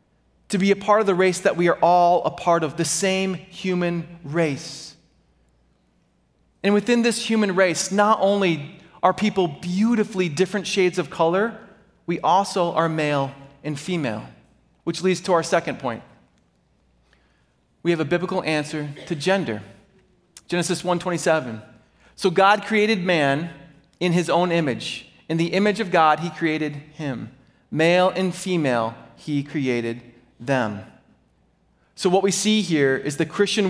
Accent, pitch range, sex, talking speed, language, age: American, 140-185 Hz, male, 150 wpm, English, 30-49